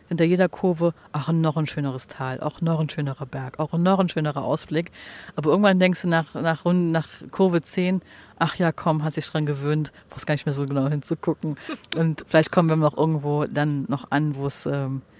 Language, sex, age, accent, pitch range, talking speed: German, female, 40-59, German, 140-160 Hz, 210 wpm